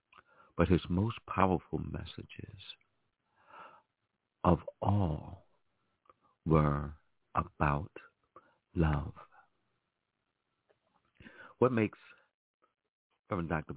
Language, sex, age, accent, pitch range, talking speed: English, male, 60-79, American, 80-105 Hz, 55 wpm